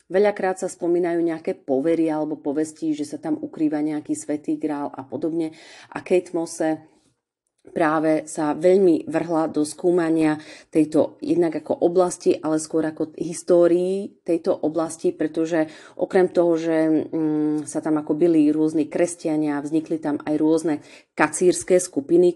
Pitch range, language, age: 150-170 Hz, Slovak, 30-49